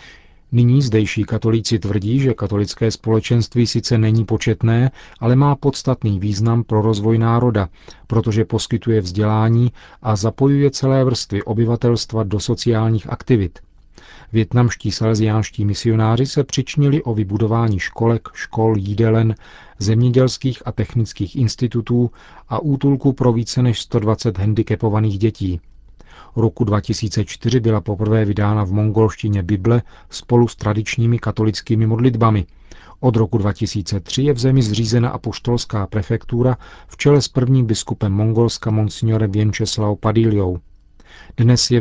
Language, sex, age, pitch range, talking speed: Czech, male, 40-59, 105-120 Hz, 120 wpm